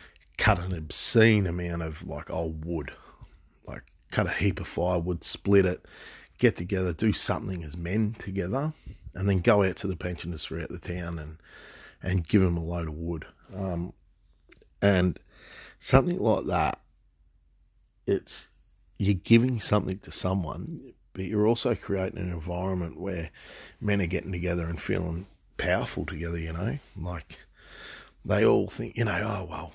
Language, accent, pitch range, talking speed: English, Australian, 85-100 Hz, 155 wpm